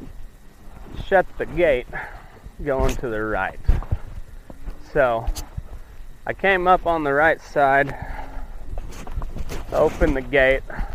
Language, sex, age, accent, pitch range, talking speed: English, male, 20-39, American, 100-145 Hz, 100 wpm